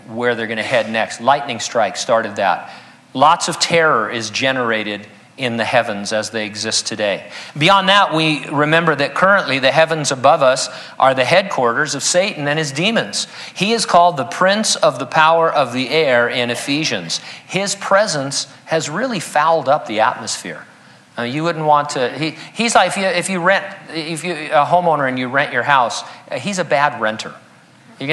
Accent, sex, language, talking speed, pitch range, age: American, male, English, 190 wpm, 130-175 Hz, 50-69